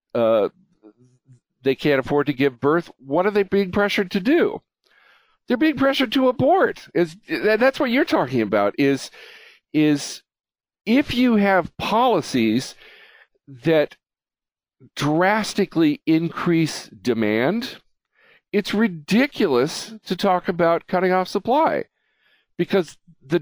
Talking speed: 120 wpm